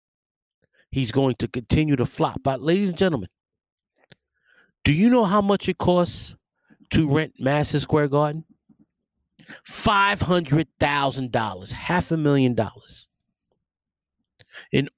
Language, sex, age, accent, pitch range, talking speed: English, male, 40-59, American, 125-155 Hz, 110 wpm